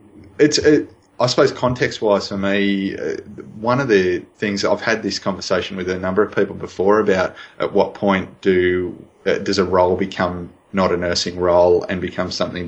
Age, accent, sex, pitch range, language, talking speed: 20-39, Australian, male, 90-105 Hz, English, 190 wpm